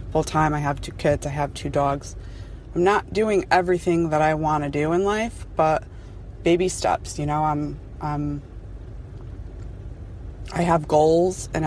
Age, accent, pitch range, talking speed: 20-39, American, 140-165 Hz, 160 wpm